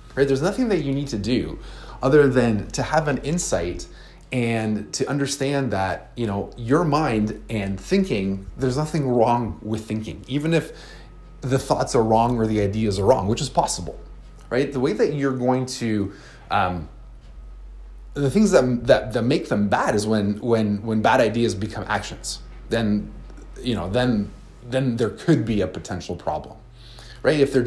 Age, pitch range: 30-49, 100-125 Hz